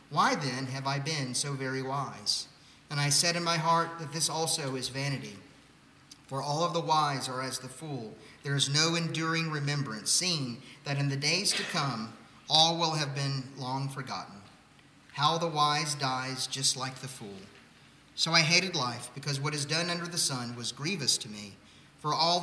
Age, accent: 40-59, American